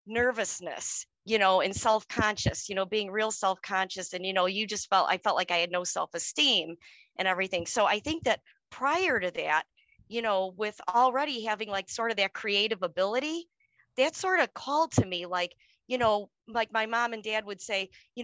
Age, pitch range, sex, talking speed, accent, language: 40-59, 190-240 Hz, female, 195 wpm, American, English